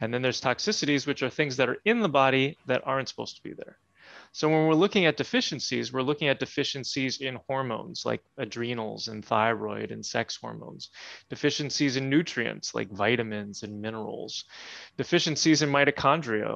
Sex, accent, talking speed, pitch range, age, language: male, American, 170 wpm, 110-135 Hz, 20-39, English